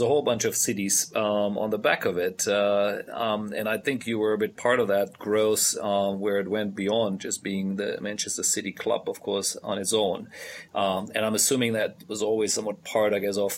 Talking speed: 230 wpm